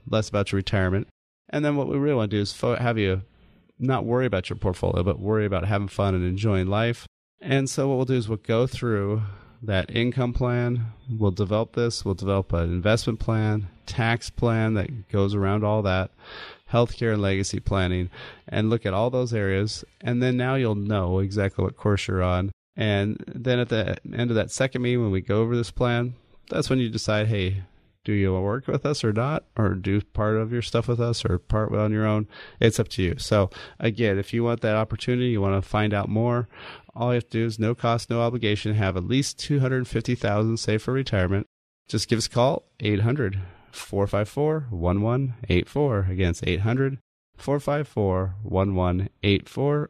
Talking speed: 190 wpm